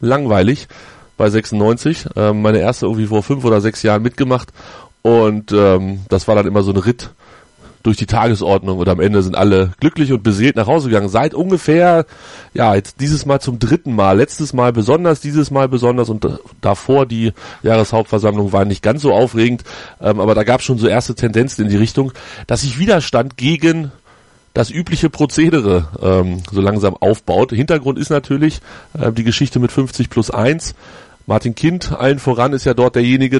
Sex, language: male, German